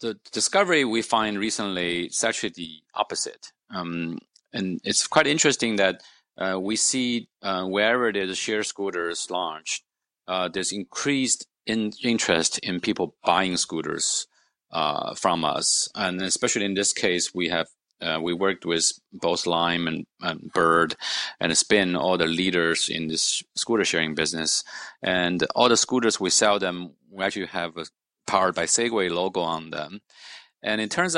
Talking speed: 160 wpm